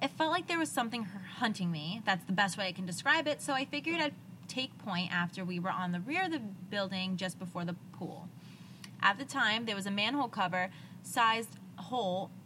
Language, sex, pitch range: English, female, 185-250 Hz